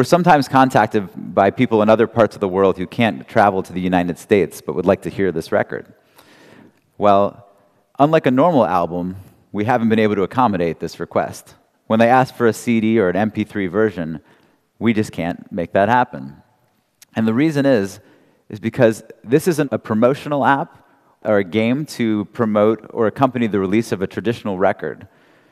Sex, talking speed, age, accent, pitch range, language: male, 180 wpm, 30-49, American, 100-125 Hz, Russian